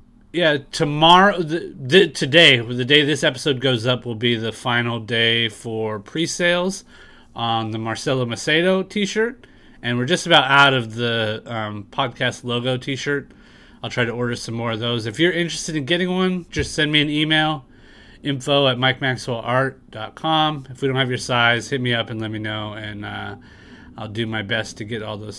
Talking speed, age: 195 wpm, 30-49